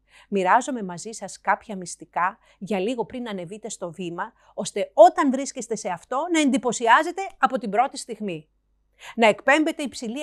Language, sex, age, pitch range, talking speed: Greek, female, 40-59, 205-285 Hz, 145 wpm